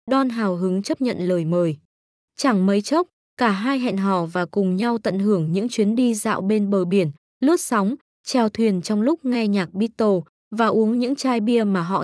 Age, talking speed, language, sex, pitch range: 20-39, 210 wpm, Vietnamese, female, 190-245 Hz